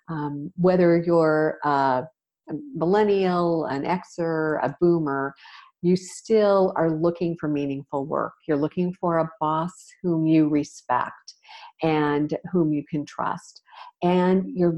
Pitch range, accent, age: 155-205 Hz, American, 50-69